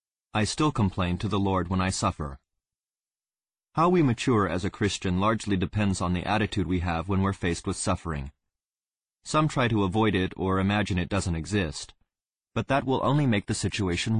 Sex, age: male, 30-49